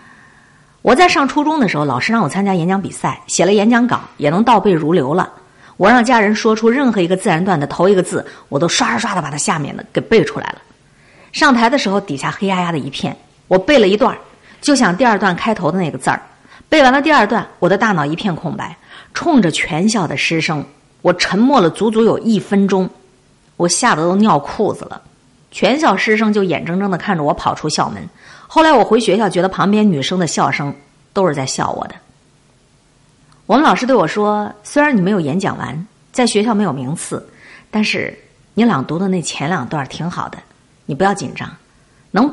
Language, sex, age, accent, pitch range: Chinese, female, 50-69, native, 155-230 Hz